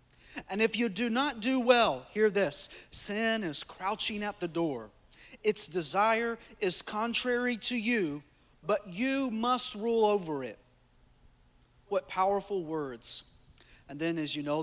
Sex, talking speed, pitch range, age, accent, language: male, 145 wpm, 150-210 Hz, 40-59, American, English